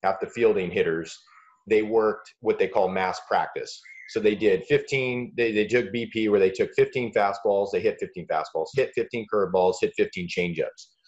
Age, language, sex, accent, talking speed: 30-49, English, male, American, 185 wpm